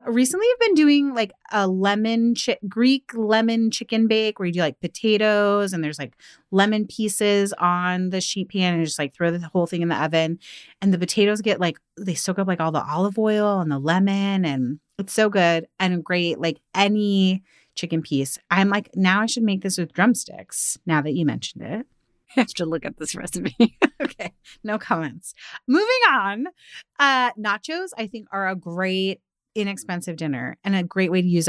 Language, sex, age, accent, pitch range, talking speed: English, female, 30-49, American, 165-220 Hz, 200 wpm